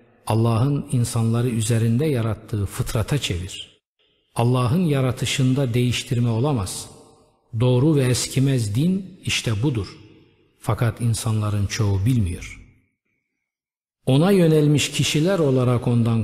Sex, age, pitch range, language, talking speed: male, 50-69, 110-140 Hz, Turkish, 90 wpm